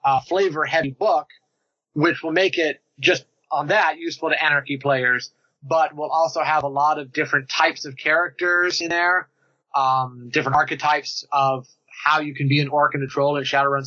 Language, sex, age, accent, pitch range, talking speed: English, male, 30-49, American, 135-160 Hz, 185 wpm